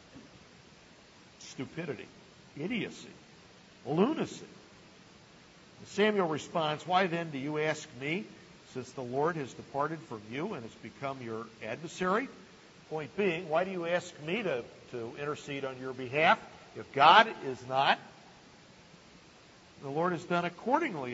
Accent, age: American, 50-69